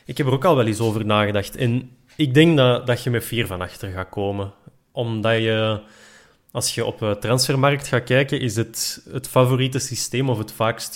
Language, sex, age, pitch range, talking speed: Dutch, male, 20-39, 110-140 Hz, 210 wpm